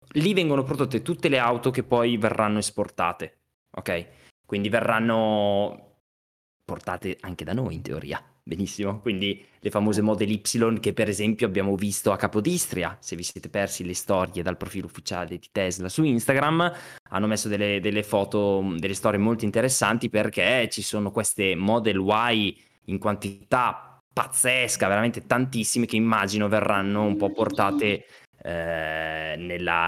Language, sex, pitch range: Italian, male, 100-130 Hz